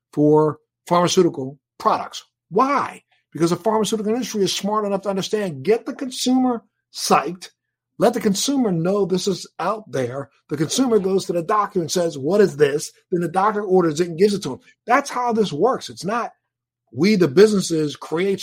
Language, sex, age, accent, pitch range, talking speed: English, male, 50-69, American, 155-205 Hz, 180 wpm